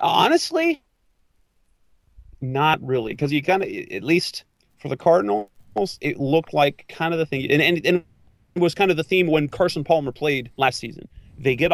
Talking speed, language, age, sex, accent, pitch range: 185 wpm, English, 30-49, male, American, 120-140 Hz